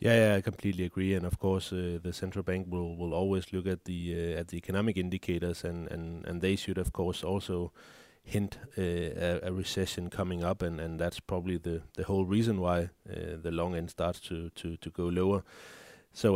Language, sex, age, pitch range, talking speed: Danish, male, 30-49, 90-110 Hz, 215 wpm